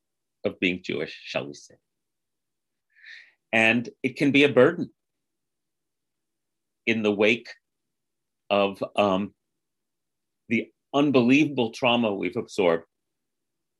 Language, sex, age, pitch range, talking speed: English, male, 40-59, 95-120 Hz, 95 wpm